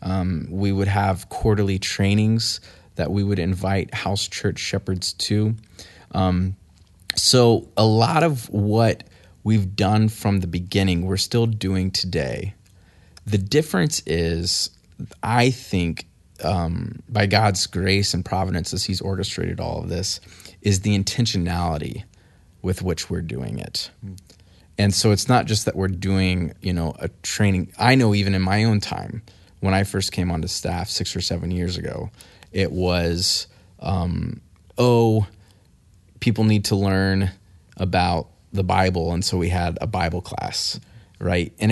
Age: 20-39